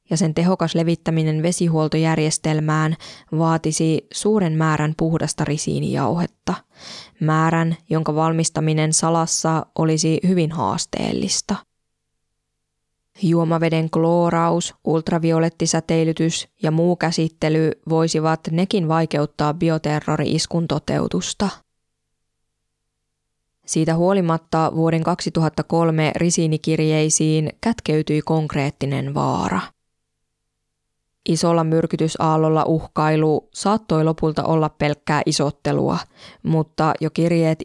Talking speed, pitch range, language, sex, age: 75 wpm, 155-165 Hz, Finnish, female, 20-39